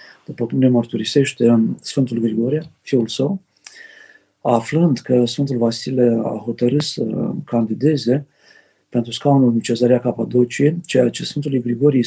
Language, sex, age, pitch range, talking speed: Romanian, male, 50-69, 120-145 Hz, 125 wpm